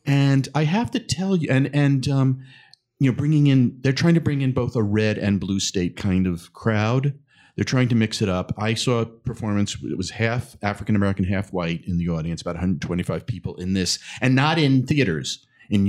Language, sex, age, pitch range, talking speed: English, male, 40-59, 100-135 Hz, 210 wpm